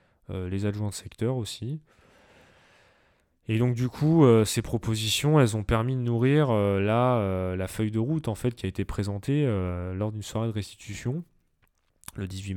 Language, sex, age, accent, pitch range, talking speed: French, male, 20-39, French, 95-115 Hz, 185 wpm